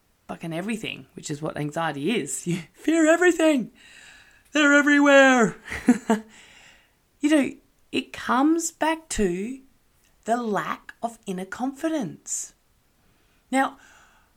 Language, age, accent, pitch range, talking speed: English, 20-39, Australian, 180-255 Hz, 100 wpm